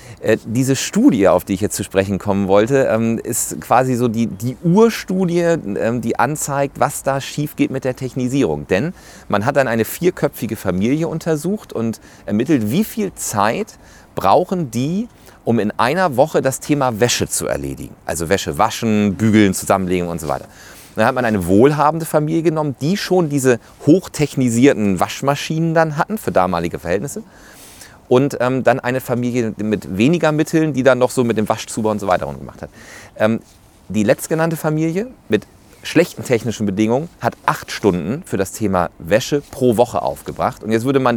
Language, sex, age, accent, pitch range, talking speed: German, male, 40-59, German, 105-145 Hz, 170 wpm